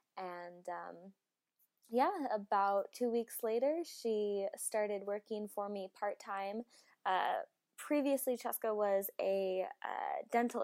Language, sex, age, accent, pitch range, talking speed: English, female, 20-39, American, 185-220 Hz, 115 wpm